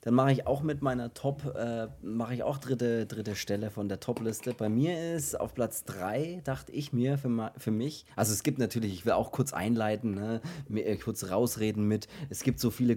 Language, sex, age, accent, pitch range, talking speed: German, male, 30-49, German, 105-135 Hz, 215 wpm